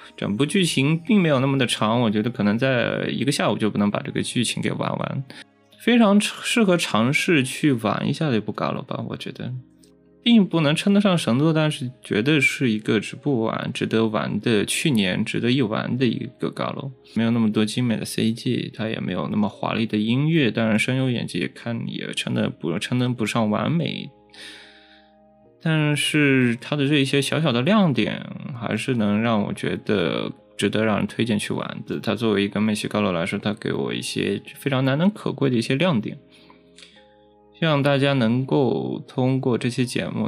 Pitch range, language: 105-145 Hz, Chinese